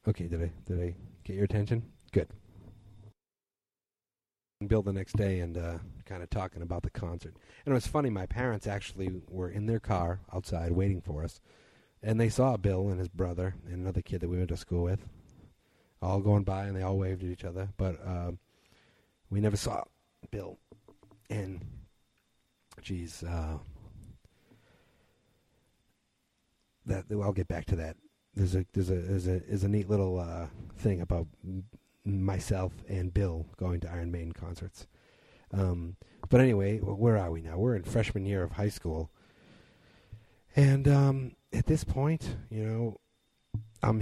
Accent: American